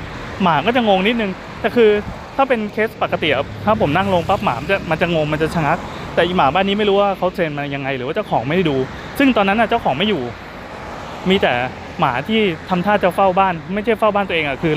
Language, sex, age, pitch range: Thai, male, 20-39, 140-195 Hz